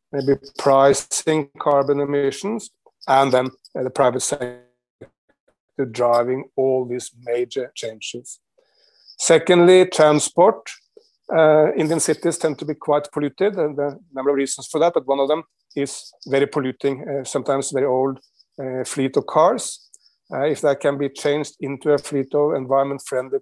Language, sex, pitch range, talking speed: English, male, 135-155 Hz, 150 wpm